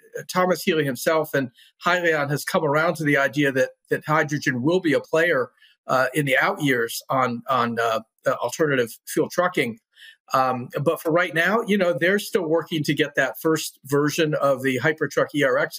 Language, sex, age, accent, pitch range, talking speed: English, male, 50-69, American, 135-185 Hz, 180 wpm